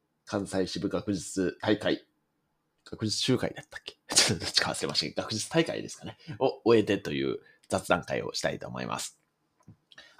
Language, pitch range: Japanese, 95-145 Hz